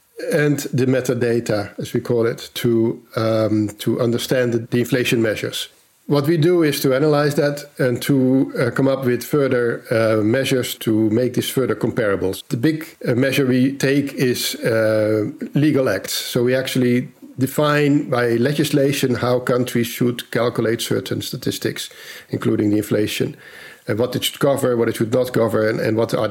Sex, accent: male, Dutch